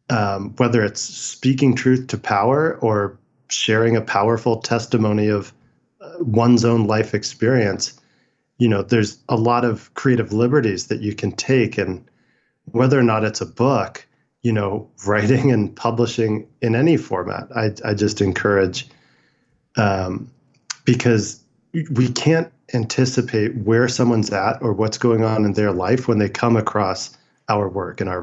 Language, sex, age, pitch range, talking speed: English, male, 40-59, 105-125 Hz, 150 wpm